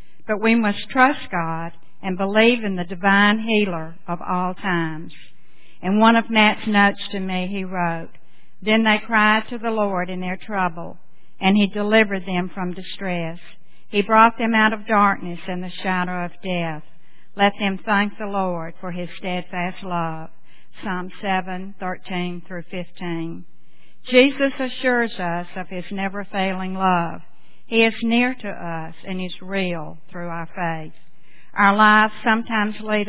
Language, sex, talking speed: English, female, 150 wpm